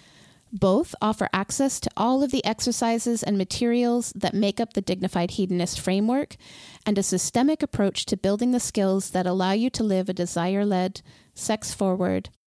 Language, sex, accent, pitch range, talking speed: English, female, American, 185-230 Hz, 170 wpm